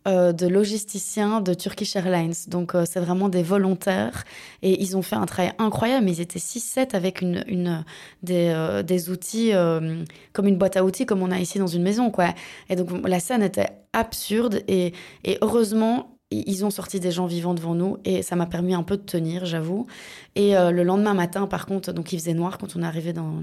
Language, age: French, 20-39